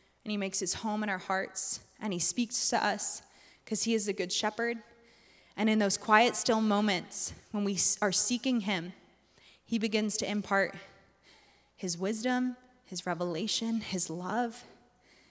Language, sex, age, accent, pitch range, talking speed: English, female, 20-39, American, 195-225 Hz, 155 wpm